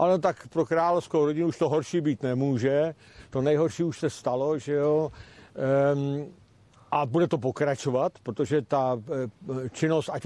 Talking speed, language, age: 145 wpm, Czech, 50-69